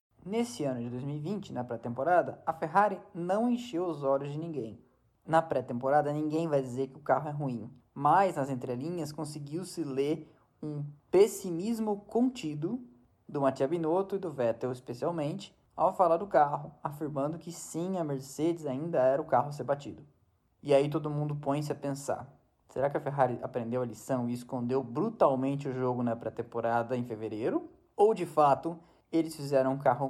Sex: male